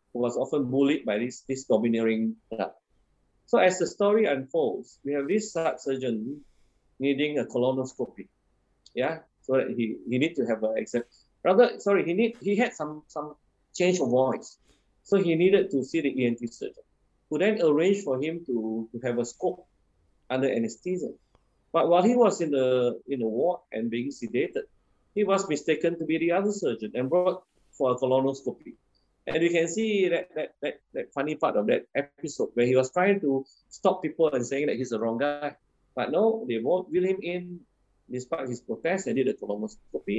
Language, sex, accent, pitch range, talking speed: English, male, Malaysian, 125-180 Hz, 185 wpm